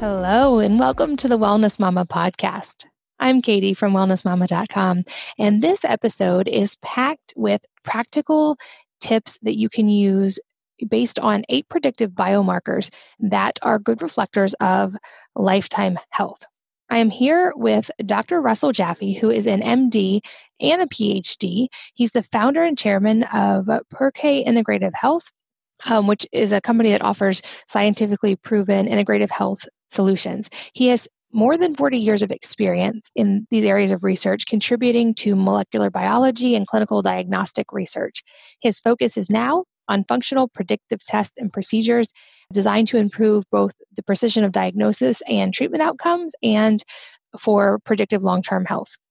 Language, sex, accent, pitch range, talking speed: English, female, American, 200-245 Hz, 145 wpm